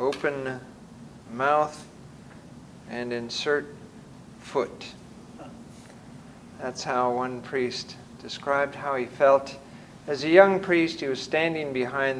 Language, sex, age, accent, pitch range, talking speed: English, male, 50-69, American, 125-165 Hz, 105 wpm